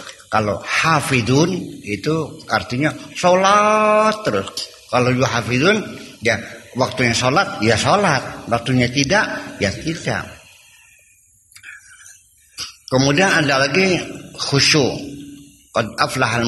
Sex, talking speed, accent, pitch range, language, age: male, 80 wpm, native, 105-145 Hz, Indonesian, 50-69